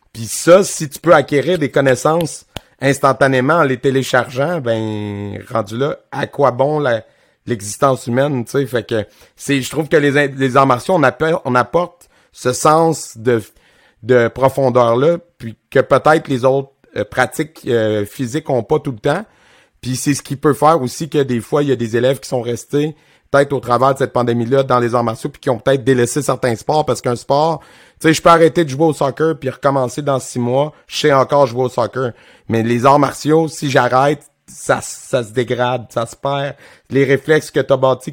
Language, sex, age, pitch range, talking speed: French, male, 30-49, 120-150 Hz, 205 wpm